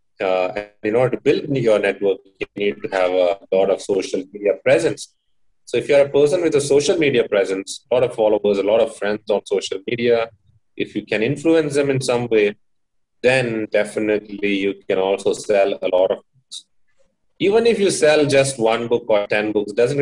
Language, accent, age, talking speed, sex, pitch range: English, Indian, 30-49, 205 wpm, male, 105-135 Hz